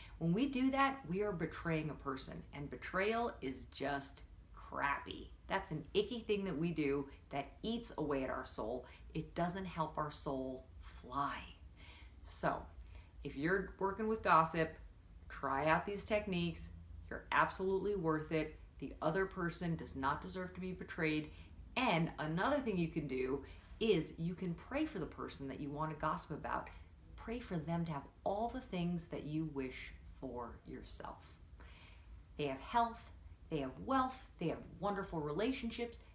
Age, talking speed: 40-59, 165 wpm